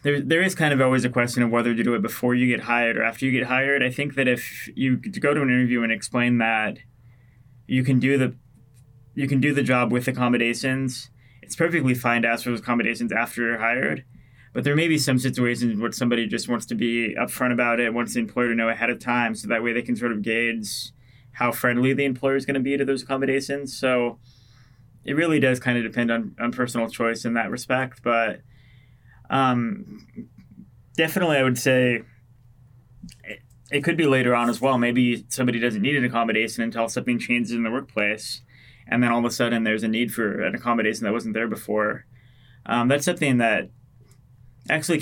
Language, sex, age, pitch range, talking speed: English, male, 20-39, 120-130 Hz, 210 wpm